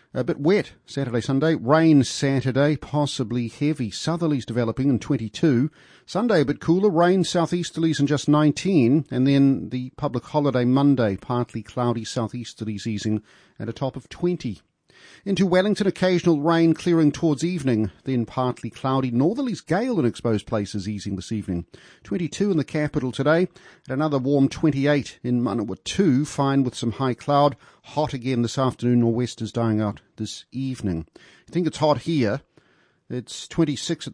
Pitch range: 115-145 Hz